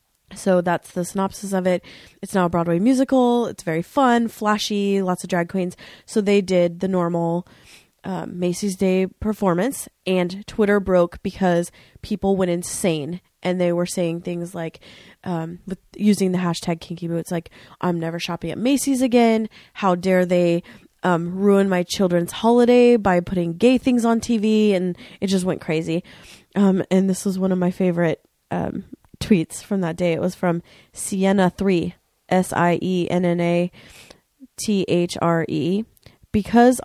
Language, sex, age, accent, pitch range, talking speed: English, female, 20-39, American, 175-205 Hz, 150 wpm